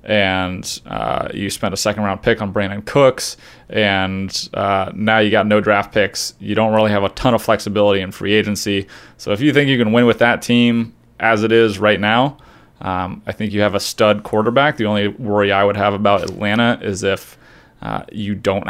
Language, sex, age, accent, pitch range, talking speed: English, male, 30-49, American, 100-115 Hz, 210 wpm